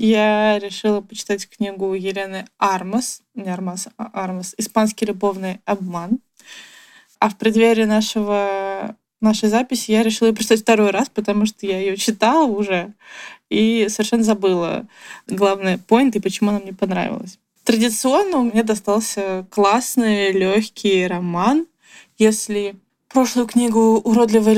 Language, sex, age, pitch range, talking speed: Russian, female, 20-39, 195-230 Hz, 125 wpm